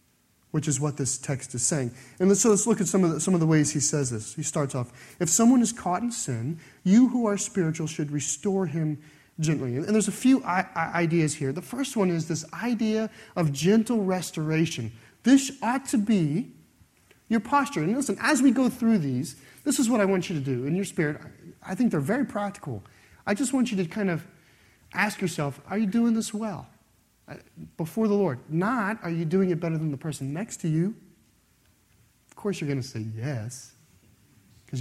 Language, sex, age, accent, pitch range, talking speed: English, male, 30-49, American, 135-205 Hz, 205 wpm